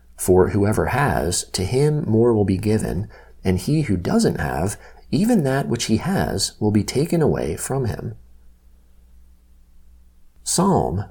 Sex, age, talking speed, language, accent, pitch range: male, 40-59, 140 wpm, English, American, 85-115 Hz